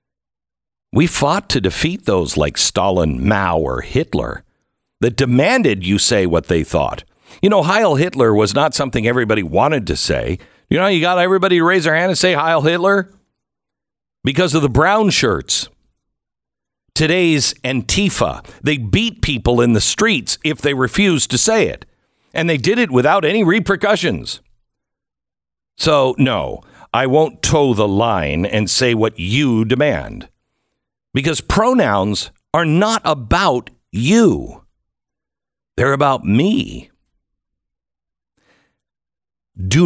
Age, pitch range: 60-79, 105-160 Hz